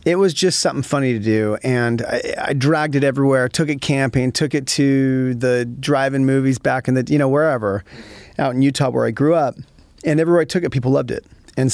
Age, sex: 40-59, male